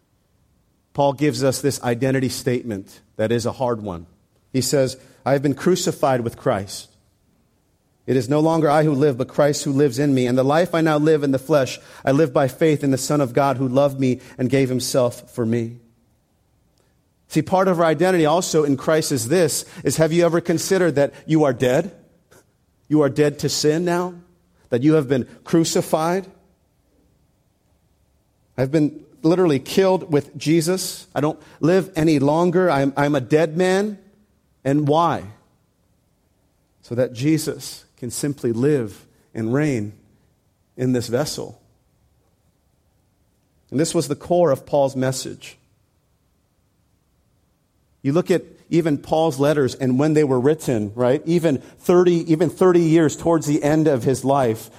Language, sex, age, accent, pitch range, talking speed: English, male, 40-59, American, 125-160 Hz, 160 wpm